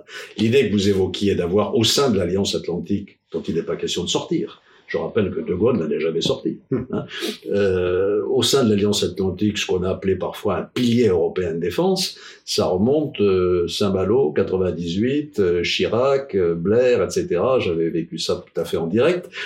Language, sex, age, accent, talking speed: French, male, 60-79, French, 190 wpm